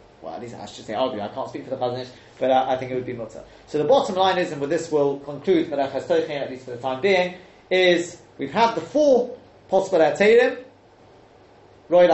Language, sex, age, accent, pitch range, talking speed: English, male, 30-49, British, 135-190 Hz, 225 wpm